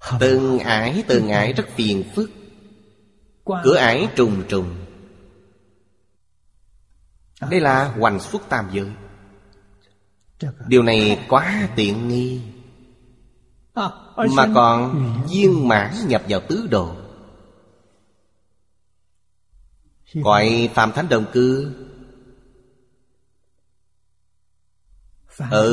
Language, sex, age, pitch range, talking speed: Vietnamese, male, 30-49, 100-130 Hz, 85 wpm